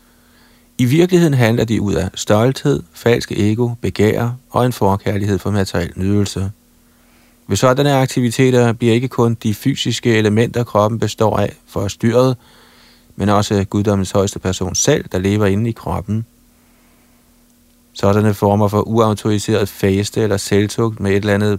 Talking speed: 140 wpm